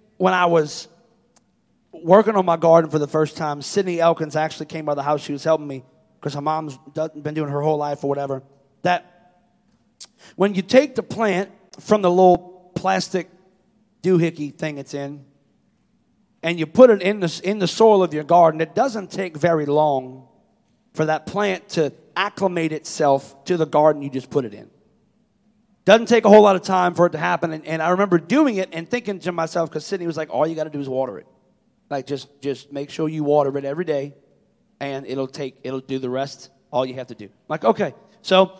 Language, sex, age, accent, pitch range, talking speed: English, male, 40-59, American, 145-200 Hz, 215 wpm